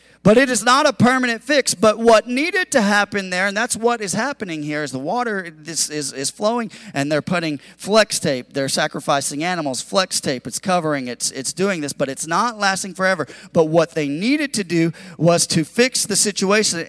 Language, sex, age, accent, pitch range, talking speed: English, male, 40-59, American, 155-225 Hz, 205 wpm